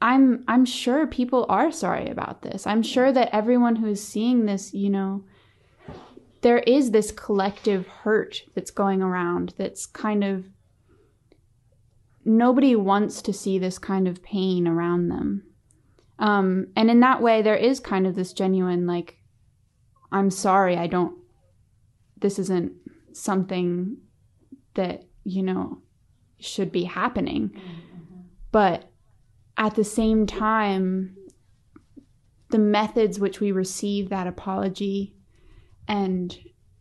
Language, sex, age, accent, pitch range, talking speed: English, female, 20-39, American, 175-210 Hz, 125 wpm